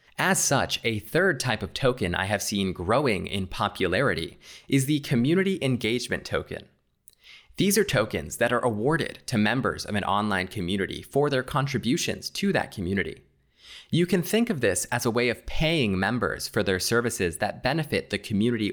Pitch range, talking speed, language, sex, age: 95-125 Hz, 175 wpm, English, male, 20-39